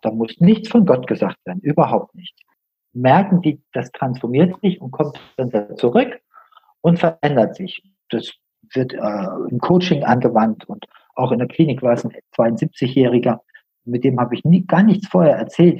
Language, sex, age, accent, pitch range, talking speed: German, male, 50-69, German, 125-170 Hz, 165 wpm